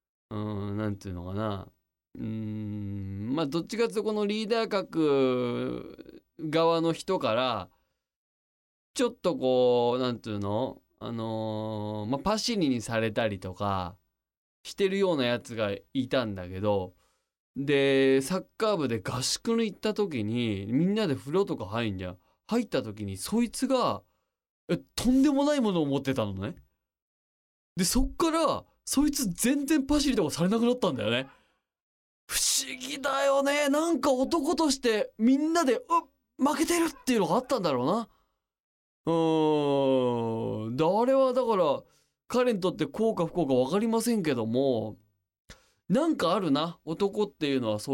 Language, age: Japanese, 20-39